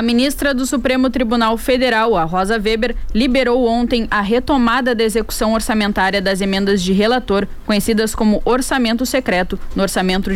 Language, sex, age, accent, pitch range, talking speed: Portuguese, female, 10-29, Brazilian, 210-255 Hz, 150 wpm